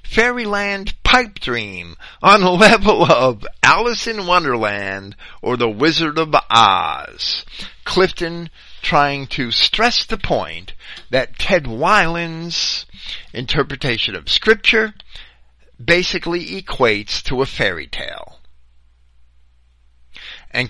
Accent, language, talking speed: American, English, 100 wpm